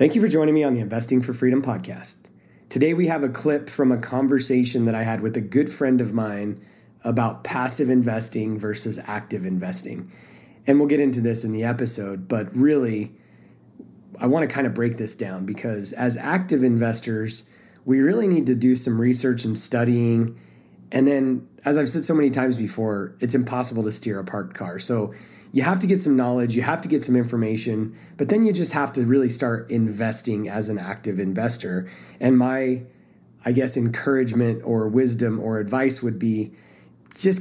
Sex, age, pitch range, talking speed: male, 30-49, 110-135 Hz, 190 wpm